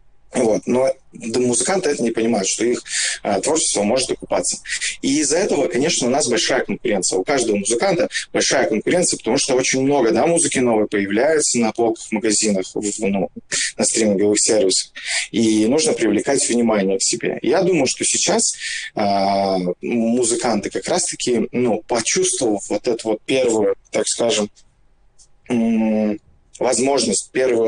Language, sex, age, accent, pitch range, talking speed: Russian, male, 20-39, native, 105-130 Hz, 140 wpm